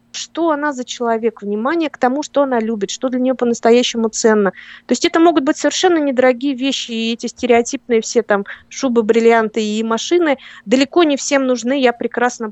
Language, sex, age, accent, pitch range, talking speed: Russian, female, 20-39, native, 210-260 Hz, 180 wpm